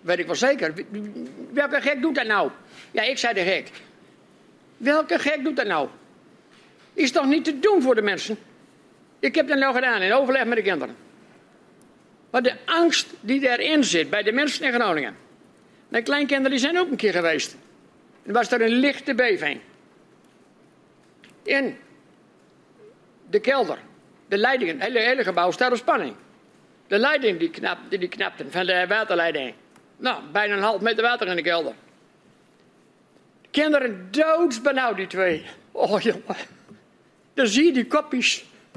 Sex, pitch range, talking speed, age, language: male, 200-275 Hz, 165 wpm, 60-79, Dutch